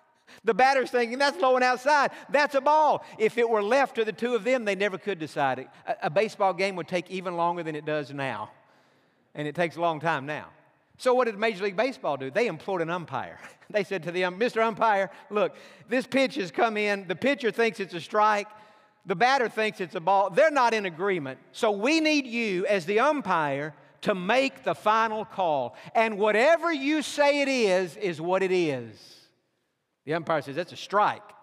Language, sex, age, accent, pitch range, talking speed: English, male, 50-69, American, 180-245 Hz, 210 wpm